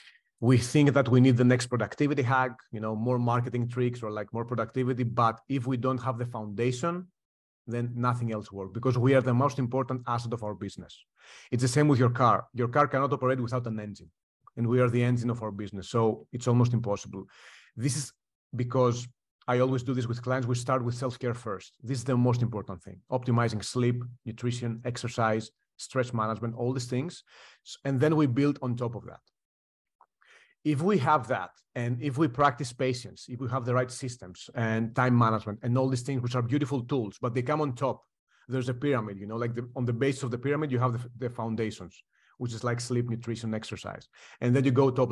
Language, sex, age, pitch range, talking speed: English, male, 40-59, 115-130 Hz, 215 wpm